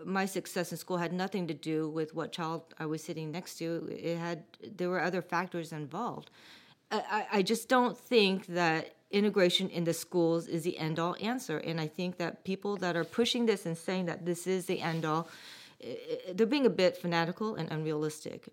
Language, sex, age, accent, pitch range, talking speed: English, female, 40-59, American, 165-200 Hz, 195 wpm